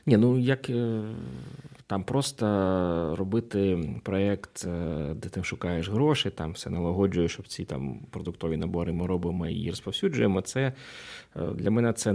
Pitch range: 90-115 Hz